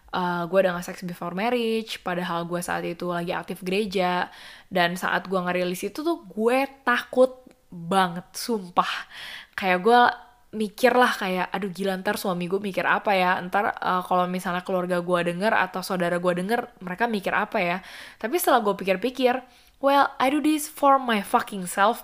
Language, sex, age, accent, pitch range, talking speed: Indonesian, female, 10-29, native, 185-250 Hz, 170 wpm